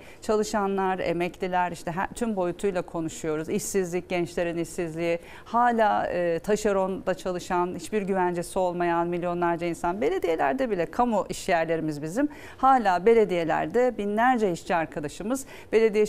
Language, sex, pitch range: Turkish, female, 175-230 Hz